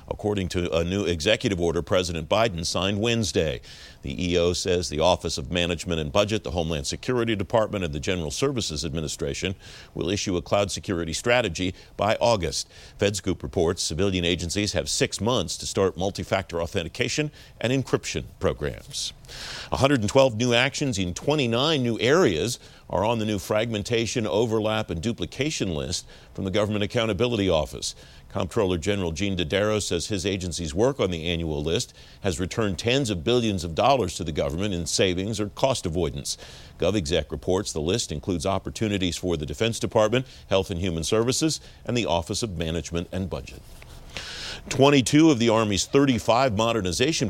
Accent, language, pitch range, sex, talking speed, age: American, English, 85-110 Hz, male, 160 wpm, 50-69